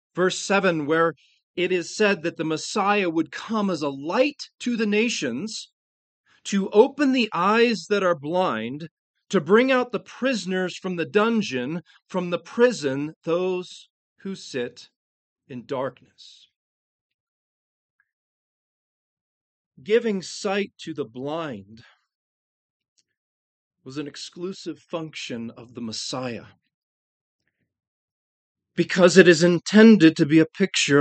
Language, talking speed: English, 115 wpm